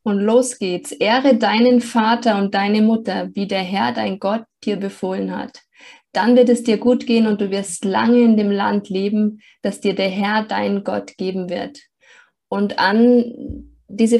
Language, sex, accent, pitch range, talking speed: German, female, German, 190-230 Hz, 180 wpm